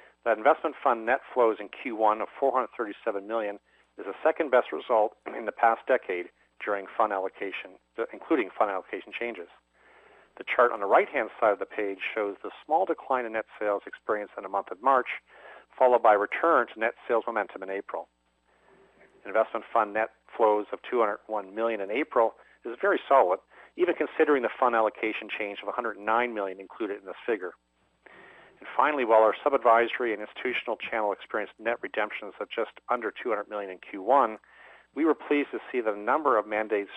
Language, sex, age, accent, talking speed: English, male, 50-69, American, 180 wpm